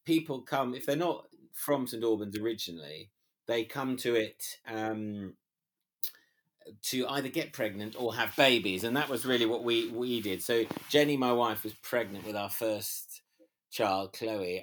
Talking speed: 165 wpm